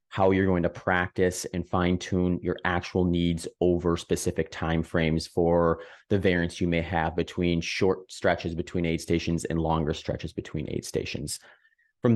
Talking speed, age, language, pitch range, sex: 165 wpm, 30-49, English, 85-100 Hz, male